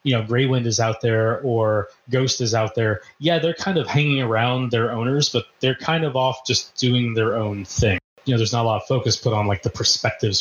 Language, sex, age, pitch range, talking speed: English, male, 30-49, 110-135 Hz, 240 wpm